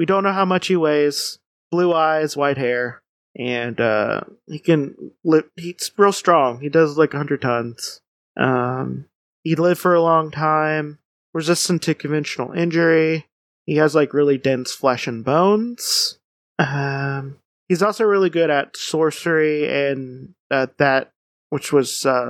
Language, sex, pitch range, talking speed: English, male, 135-175 Hz, 150 wpm